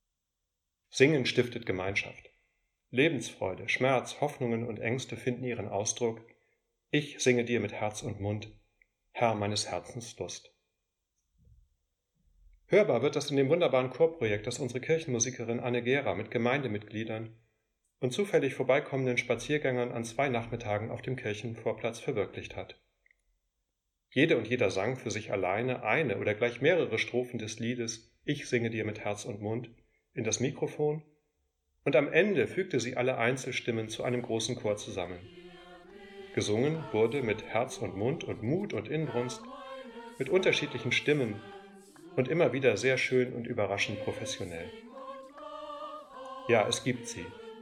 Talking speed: 135 wpm